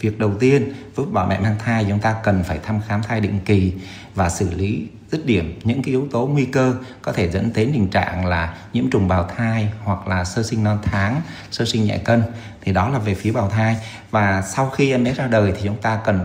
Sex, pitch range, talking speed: male, 95-120 Hz, 250 wpm